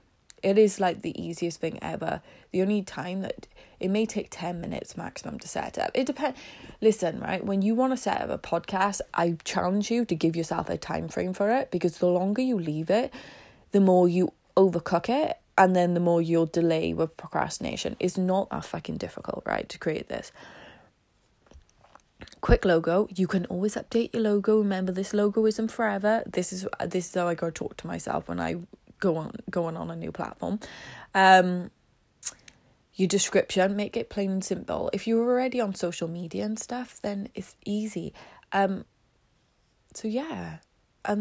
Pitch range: 175-210 Hz